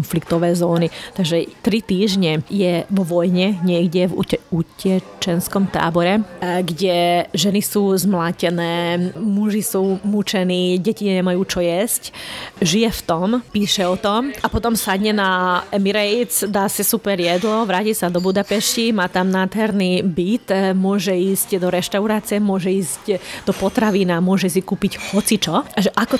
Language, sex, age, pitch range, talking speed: Slovak, female, 20-39, 175-210 Hz, 135 wpm